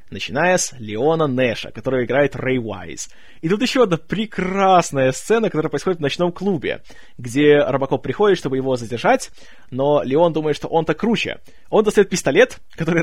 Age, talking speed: 20-39, 160 wpm